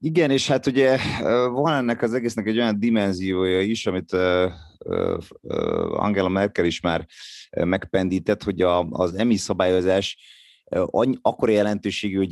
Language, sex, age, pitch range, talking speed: Hungarian, male, 30-49, 90-110 Hz, 120 wpm